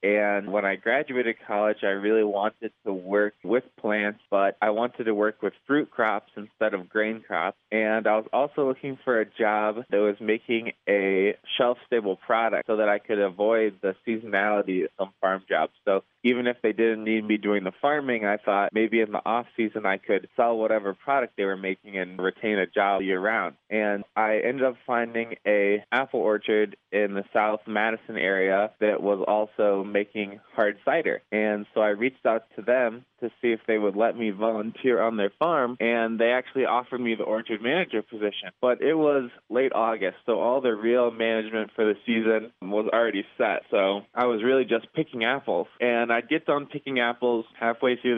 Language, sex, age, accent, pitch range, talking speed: English, male, 20-39, American, 105-115 Hz, 195 wpm